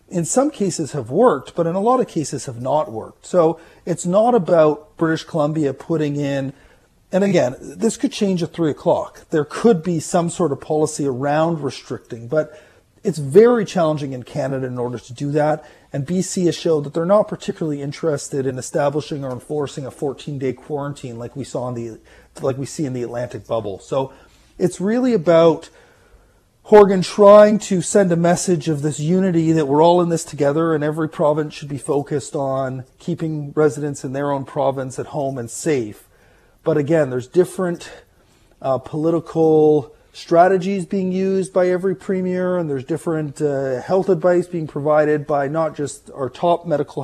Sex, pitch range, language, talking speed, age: male, 140-175 Hz, English, 180 wpm, 40-59